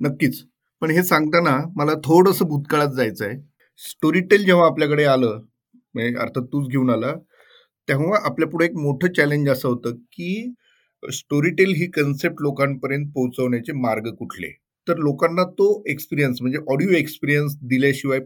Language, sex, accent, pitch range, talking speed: Marathi, male, native, 125-155 Hz, 135 wpm